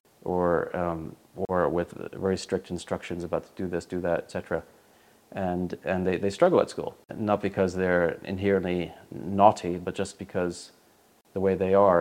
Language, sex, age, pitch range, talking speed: English, male, 30-49, 85-95 Hz, 165 wpm